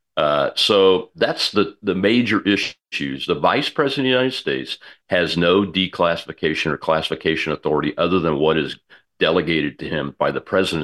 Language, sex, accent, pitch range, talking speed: English, male, American, 80-110 Hz, 165 wpm